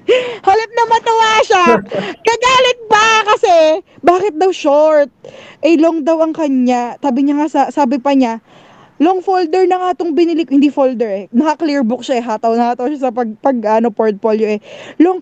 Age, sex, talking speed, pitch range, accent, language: 20-39, female, 175 wpm, 260-360 Hz, native, Filipino